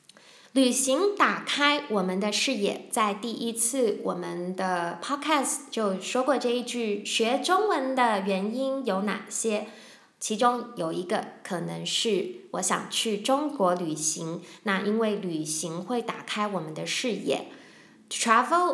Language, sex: English, female